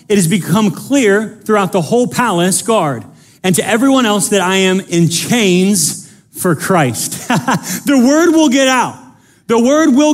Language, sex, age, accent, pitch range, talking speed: English, male, 30-49, American, 190-255 Hz, 165 wpm